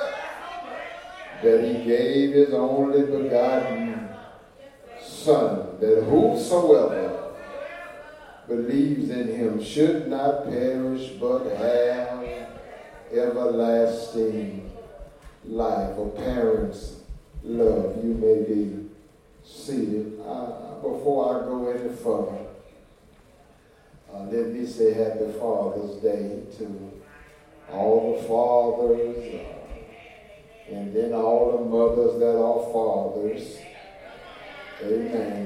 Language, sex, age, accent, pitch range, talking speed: English, male, 60-79, American, 115-155 Hz, 85 wpm